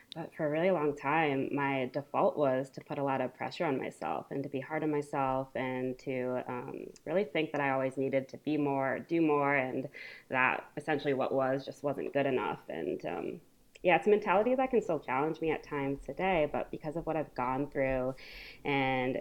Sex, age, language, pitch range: female, 20-39, English, 135-155 Hz